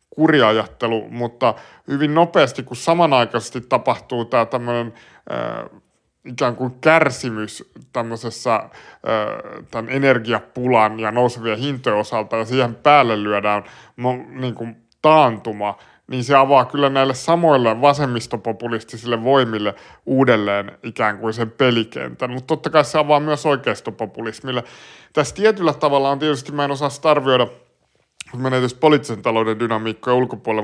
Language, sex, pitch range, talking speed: Finnish, male, 115-140 Hz, 125 wpm